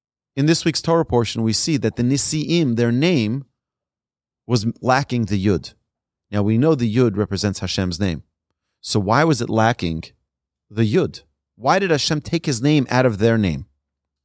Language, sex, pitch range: English, male, 105-145 Hz